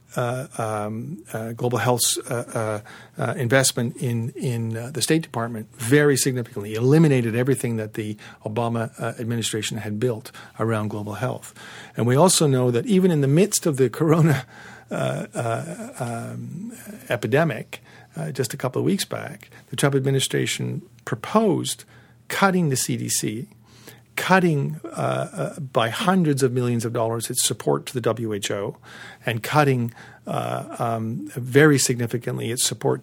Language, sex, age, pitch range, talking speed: English, male, 50-69, 115-155 Hz, 145 wpm